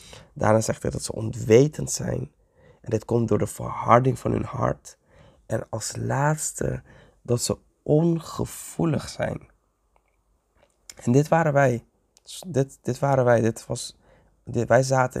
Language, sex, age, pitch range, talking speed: Dutch, male, 20-39, 110-135 Hz, 140 wpm